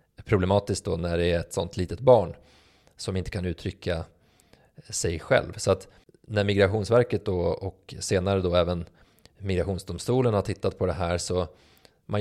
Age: 20-39